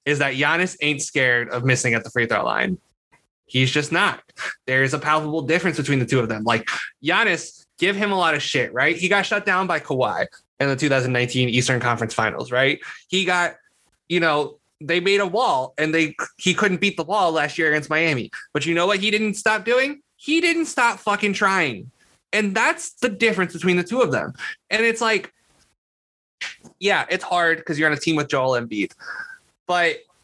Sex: male